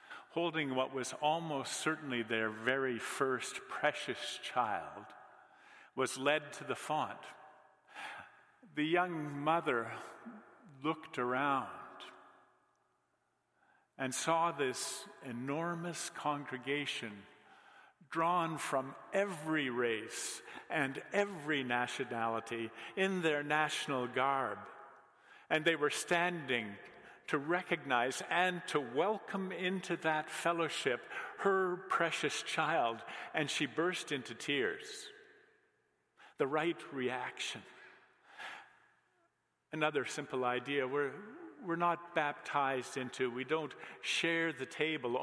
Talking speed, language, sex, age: 95 wpm, English, male, 50-69